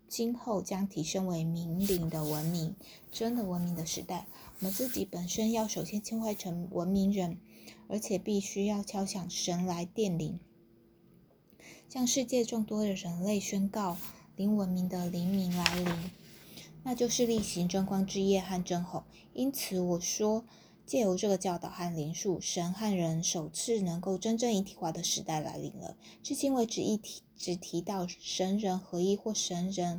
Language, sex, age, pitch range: Chinese, female, 20-39, 175-210 Hz